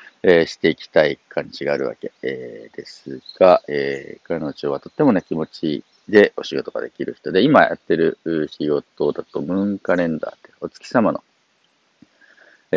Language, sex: Japanese, male